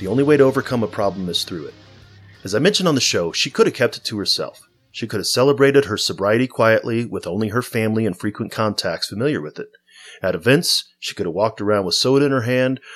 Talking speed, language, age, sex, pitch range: 240 wpm, English, 30-49, male, 100-130 Hz